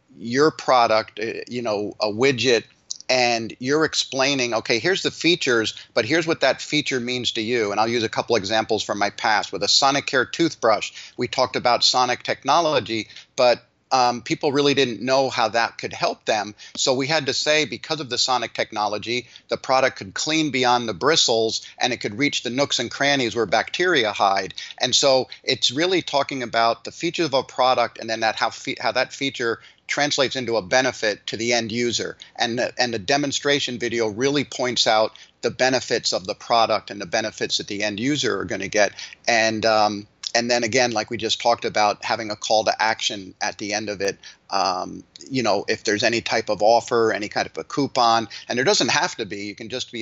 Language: English